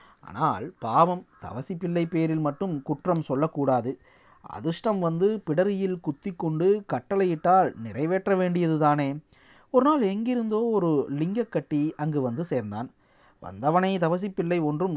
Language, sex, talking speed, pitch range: Tamil, male, 110 wpm, 140-185 Hz